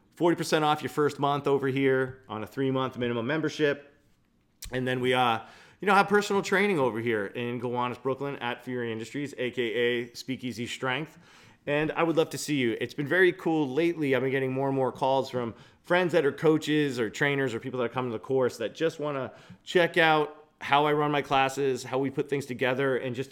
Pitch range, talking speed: 125-155 Hz, 215 wpm